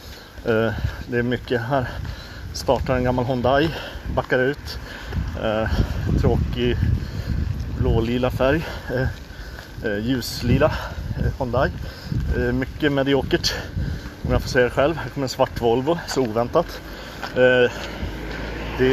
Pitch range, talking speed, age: 105-135 Hz, 120 wpm, 30-49